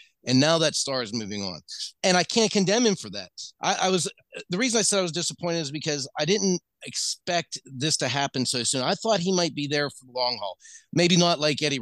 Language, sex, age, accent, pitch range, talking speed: English, male, 40-59, American, 125-175 Hz, 245 wpm